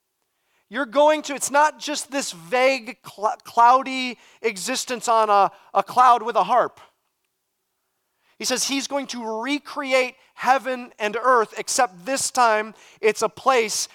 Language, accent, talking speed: English, American, 140 wpm